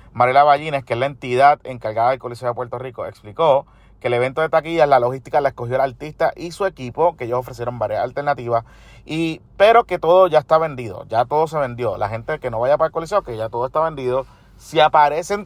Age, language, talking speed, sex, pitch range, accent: 30-49, Spanish, 225 wpm, male, 120-160 Hz, Venezuelan